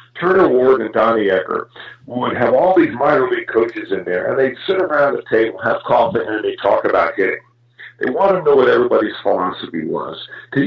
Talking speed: 200 wpm